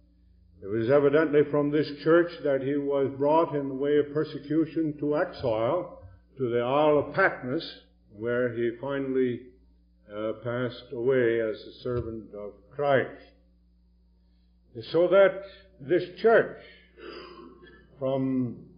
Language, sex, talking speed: English, male, 120 wpm